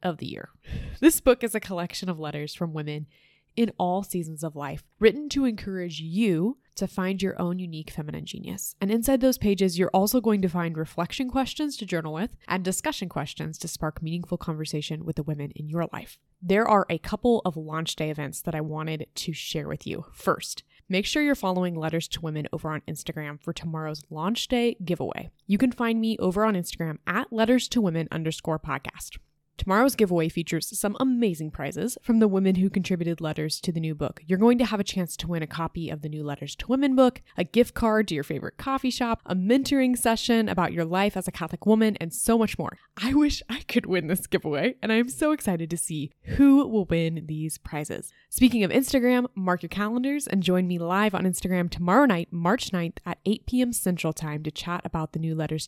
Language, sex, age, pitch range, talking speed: English, female, 20-39, 160-220 Hz, 215 wpm